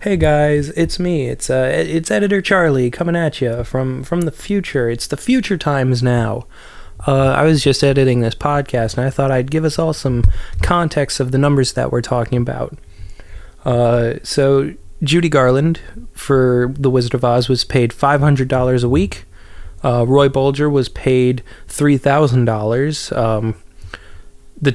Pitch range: 120-150 Hz